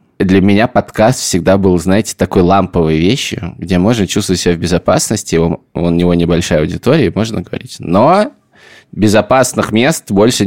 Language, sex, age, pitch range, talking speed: Russian, male, 20-39, 85-105 Hz, 145 wpm